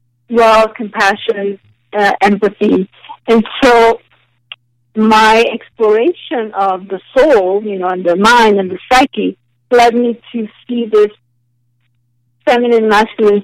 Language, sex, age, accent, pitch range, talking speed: English, female, 50-69, American, 175-220 Hz, 115 wpm